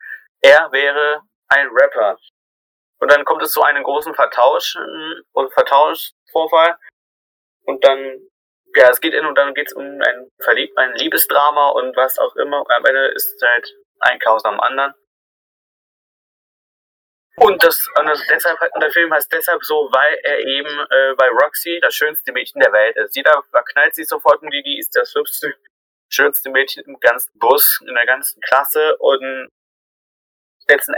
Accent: German